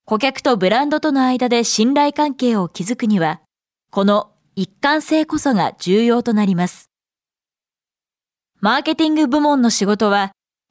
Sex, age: female, 20-39